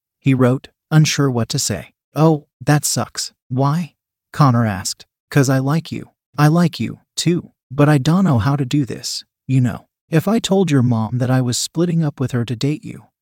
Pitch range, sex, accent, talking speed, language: 120-150 Hz, male, American, 205 wpm, English